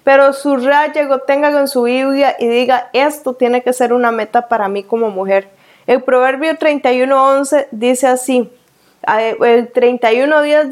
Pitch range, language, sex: 235-275 Hz, Spanish, female